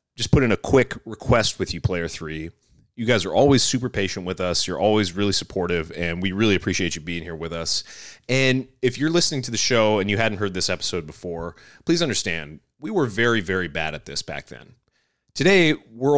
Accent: American